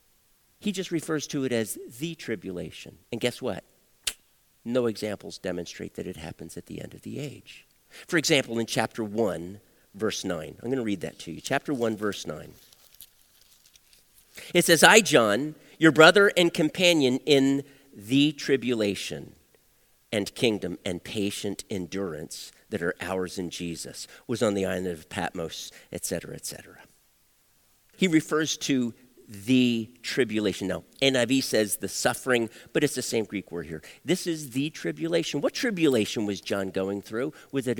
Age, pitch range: 50-69, 100-150 Hz